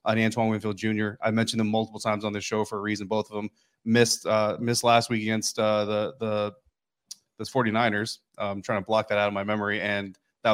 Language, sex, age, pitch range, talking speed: English, male, 30-49, 105-125 Hz, 230 wpm